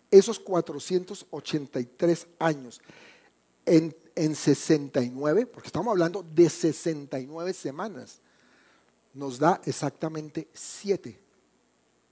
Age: 50-69